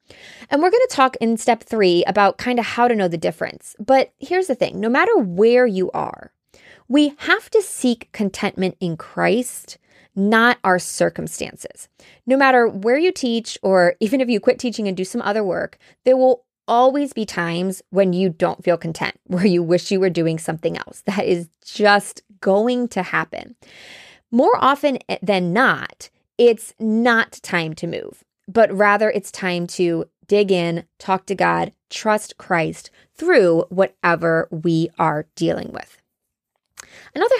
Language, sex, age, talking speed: English, female, 20-39, 165 wpm